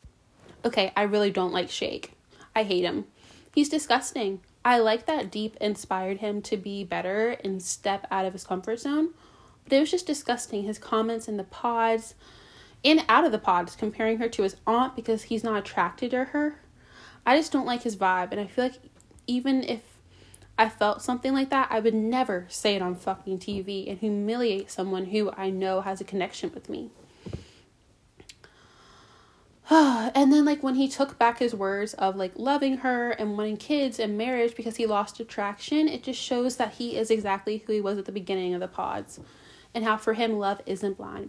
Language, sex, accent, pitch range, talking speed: English, female, American, 195-250 Hz, 195 wpm